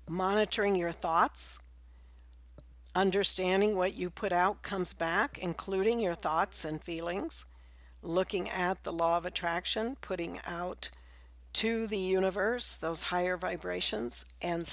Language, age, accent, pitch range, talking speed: English, 60-79, American, 160-200 Hz, 120 wpm